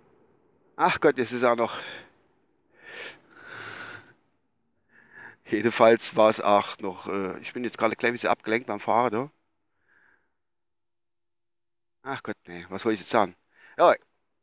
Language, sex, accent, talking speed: German, male, German, 130 wpm